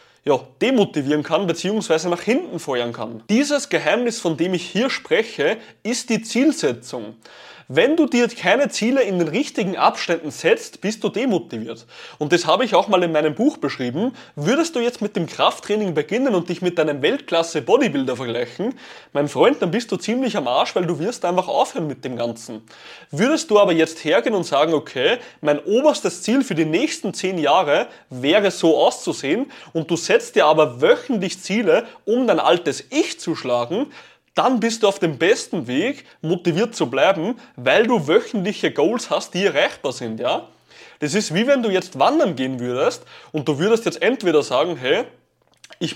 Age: 20-39